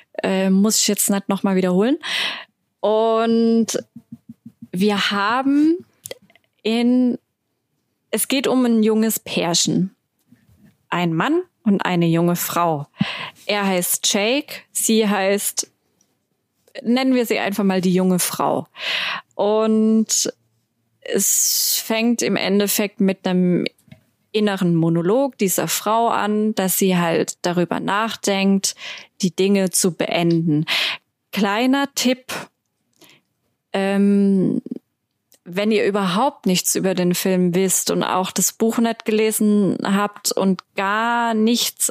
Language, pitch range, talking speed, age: German, 185-230 Hz, 115 wpm, 20-39